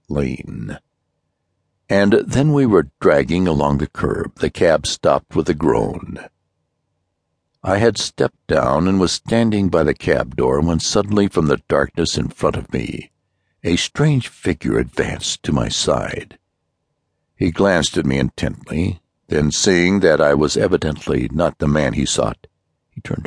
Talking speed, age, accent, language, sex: 155 wpm, 60-79, American, English, male